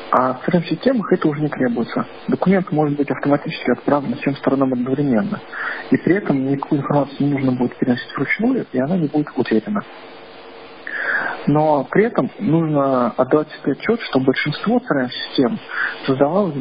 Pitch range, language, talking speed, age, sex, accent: 130-155 Hz, Russian, 150 wpm, 40-59, male, native